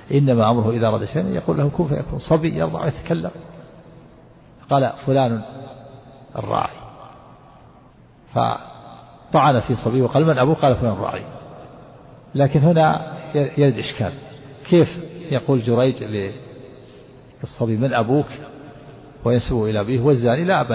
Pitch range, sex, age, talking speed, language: 110-135 Hz, male, 50-69, 115 wpm, Arabic